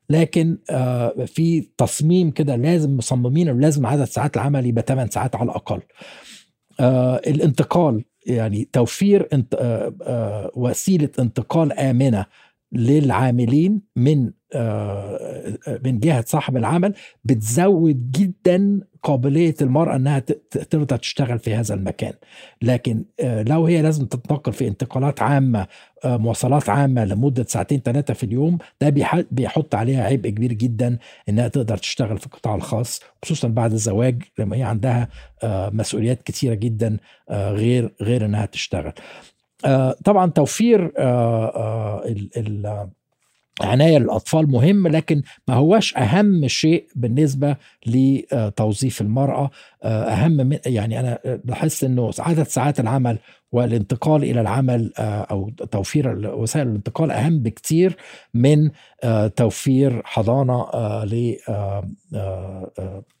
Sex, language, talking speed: male, Arabic, 110 wpm